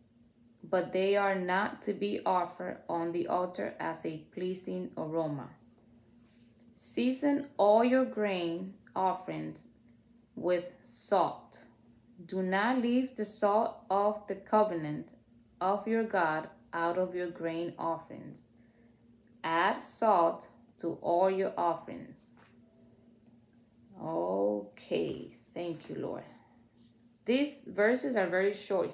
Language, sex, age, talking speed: English, female, 20-39, 110 wpm